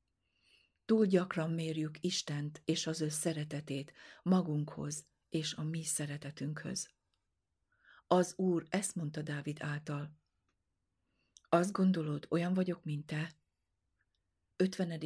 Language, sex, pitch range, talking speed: Hungarian, female, 145-165 Hz, 105 wpm